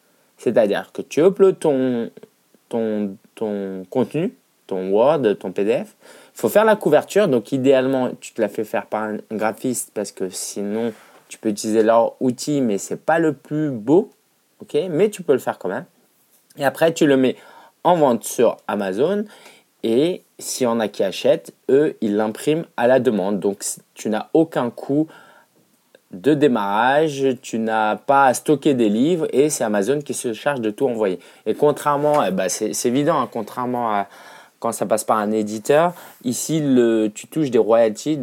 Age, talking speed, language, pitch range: 20-39, 180 wpm, French, 110-140 Hz